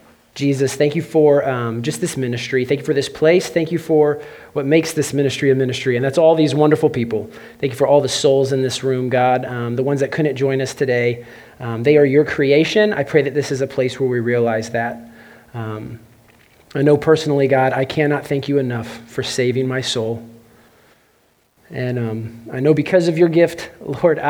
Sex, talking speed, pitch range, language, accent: male, 210 wpm, 125-150 Hz, English, American